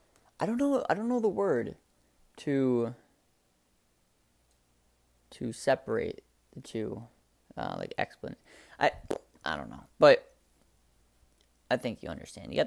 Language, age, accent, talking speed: English, 20-39, American, 130 wpm